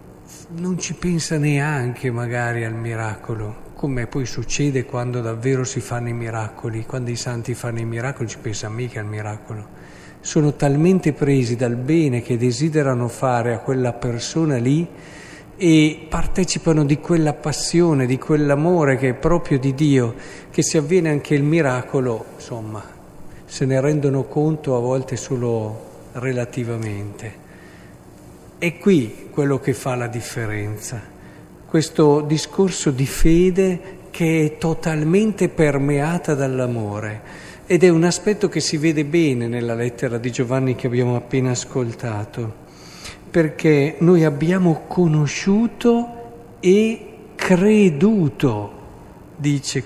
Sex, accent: male, native